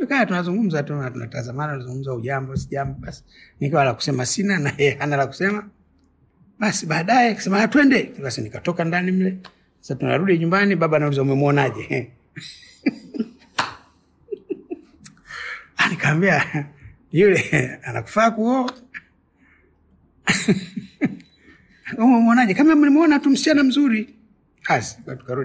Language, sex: Swahili, male